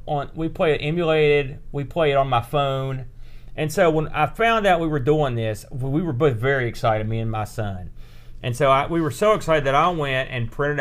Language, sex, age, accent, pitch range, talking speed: English, male, 40-59, American, 115-140 Hz, 235 wpm